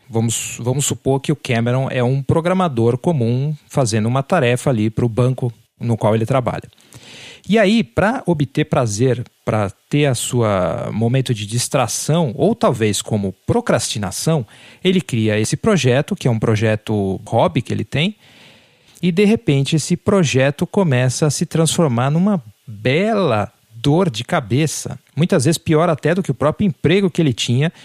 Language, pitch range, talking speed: Portuguese, 120-160 Hz, 160 wpm